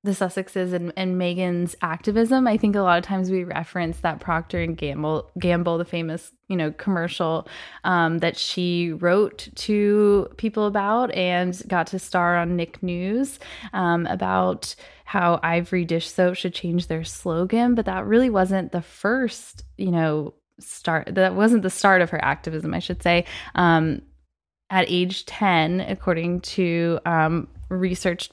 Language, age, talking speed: English, 20-39, 160 wpm